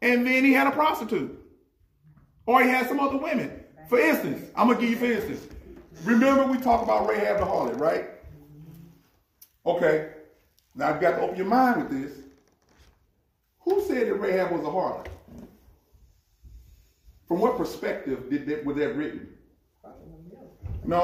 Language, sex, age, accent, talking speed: English, male, 40-59, American, 155 wpm